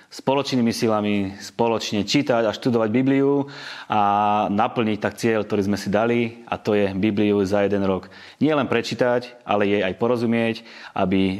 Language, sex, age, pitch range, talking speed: Slovak, male, 30-49, 100-120 Hz, 155 wpm